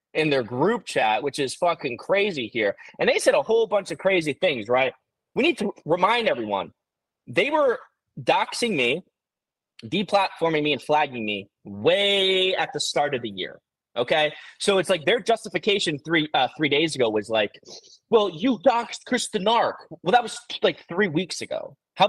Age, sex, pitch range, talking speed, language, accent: 20-39, male, 135-190 Hz, 175 wpm, English, American